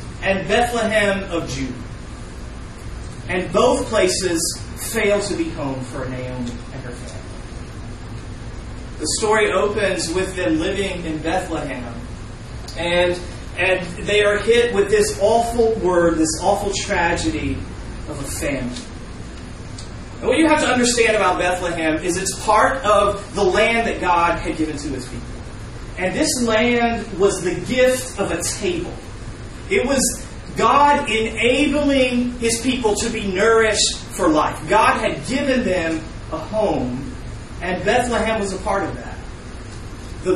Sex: male